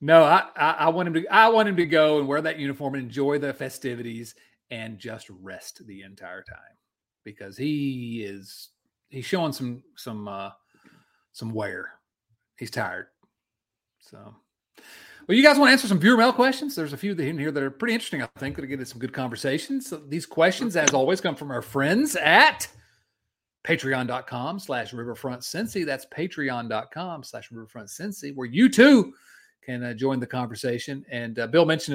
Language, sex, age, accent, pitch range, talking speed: English, male, 40-59, American, 115-165 Hz, 180 wpm